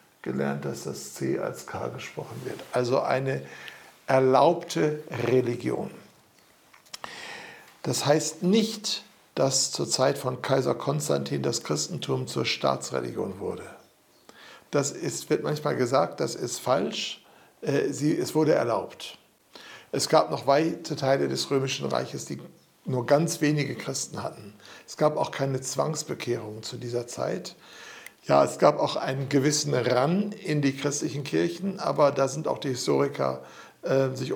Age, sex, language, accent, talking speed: 60-79, male, German, German, 135 wpm